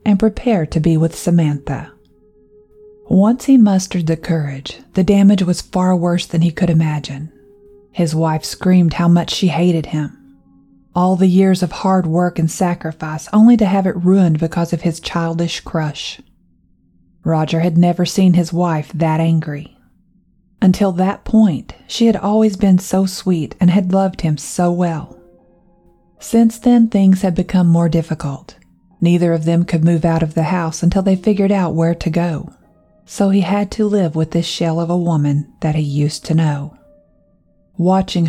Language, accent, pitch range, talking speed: English, American, 160-190 Hz, 170 wpm